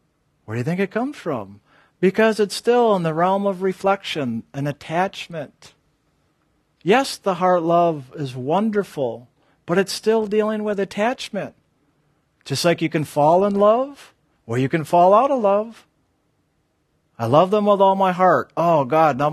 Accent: American